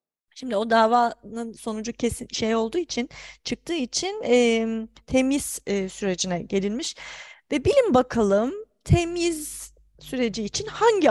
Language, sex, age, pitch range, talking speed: Turkish, female, 30-49, 195-245 Hz, 120 wpm